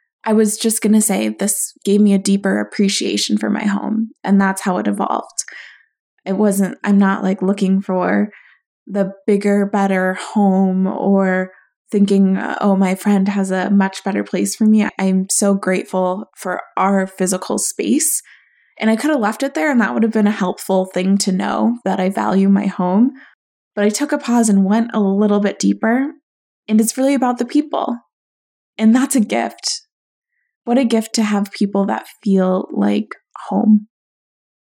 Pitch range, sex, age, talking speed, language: 195-235 Hz, female, 20-39, 180 wpm, English